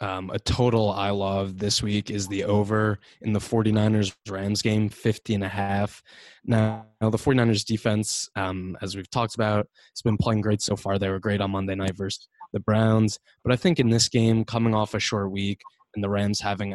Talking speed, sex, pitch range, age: 210 wpm, male, 100-110 Hz, 20-39